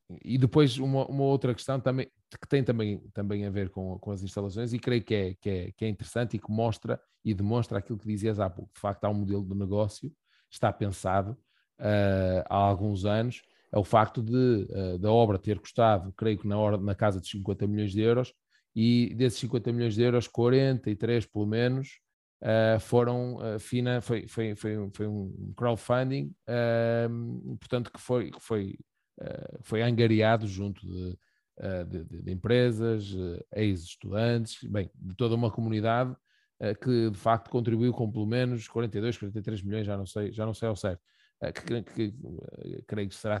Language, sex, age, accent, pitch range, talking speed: Portuguese, male, 20-39, Brazilian, 100-120 Hz, 175 wpm